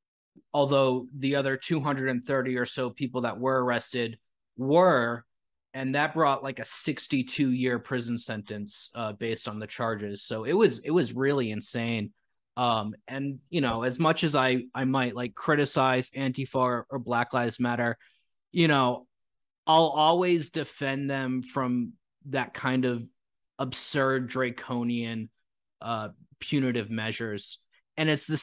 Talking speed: 145 wpm